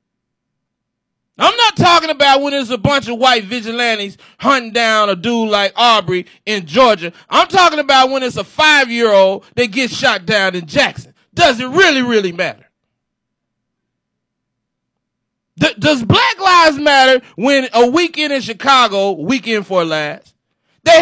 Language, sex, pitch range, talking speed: English, male, 230-315 Hz, 145 wpm